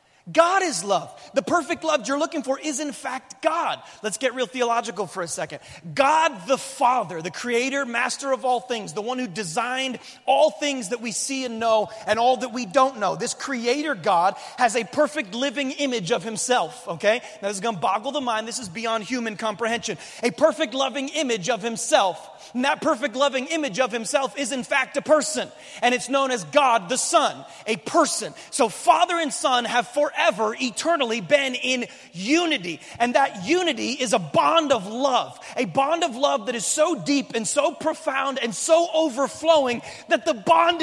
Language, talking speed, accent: English, 195 wpm, American